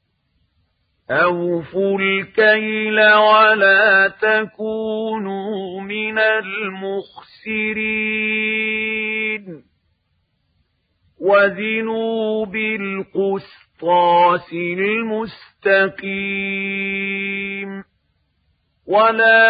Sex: male